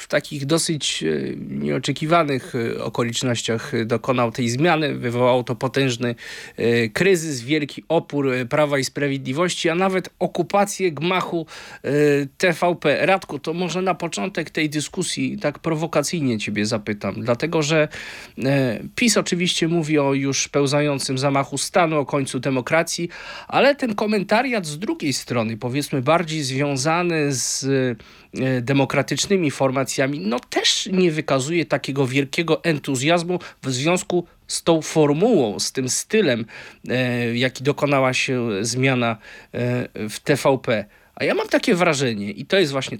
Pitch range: 130-170 Hz